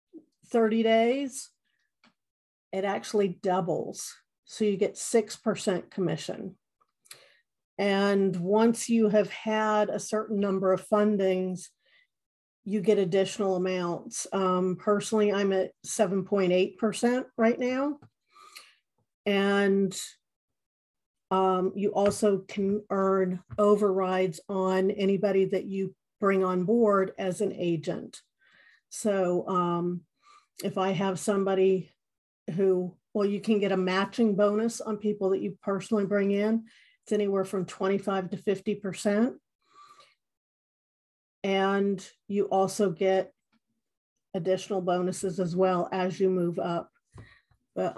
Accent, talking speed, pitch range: American, 115 wpm, 190-215 Hz